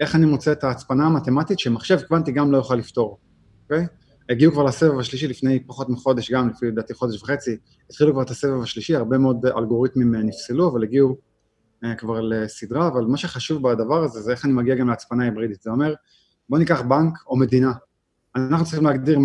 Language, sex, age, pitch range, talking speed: Hebrew, male, 20-39, 120-150 Hz, 195 wpm